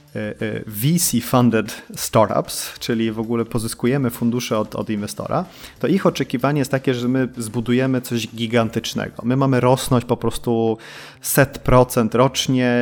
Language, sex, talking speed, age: Polish, male, 125 wpm, 30-49